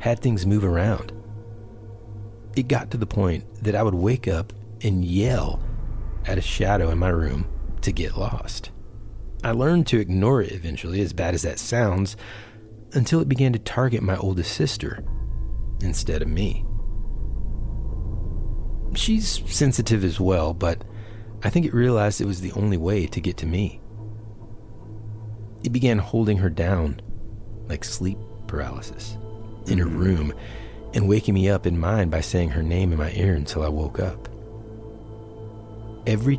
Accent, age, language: American, 30-49, English